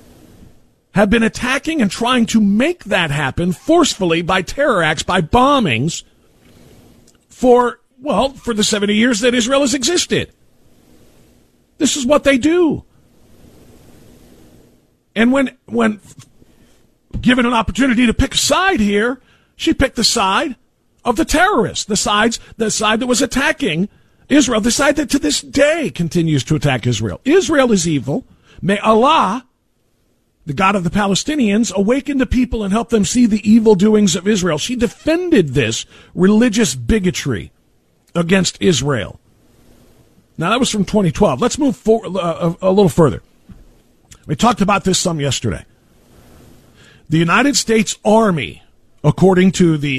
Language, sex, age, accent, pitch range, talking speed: English, male, 50-69, American, 165-245 Hz, 145 wpm